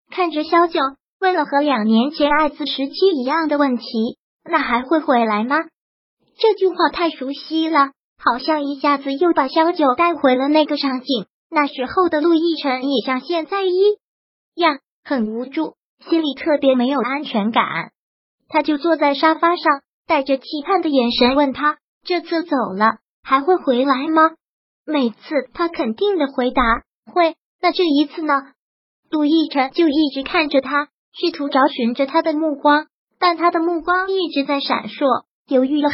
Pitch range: 265-325 Hz